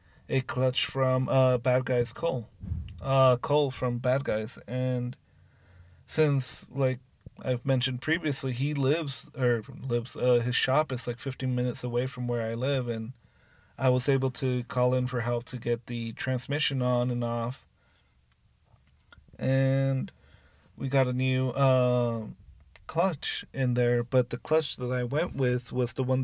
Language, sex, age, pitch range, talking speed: English, male, 30-49, 120-140 Hz, 160 wpm